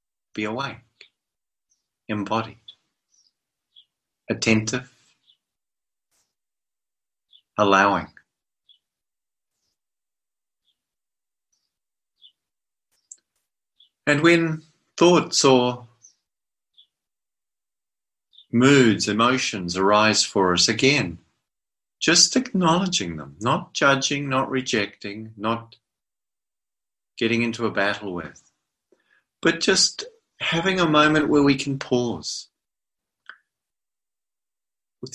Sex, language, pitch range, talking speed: male, English, 105-140 Hz, 65 wpm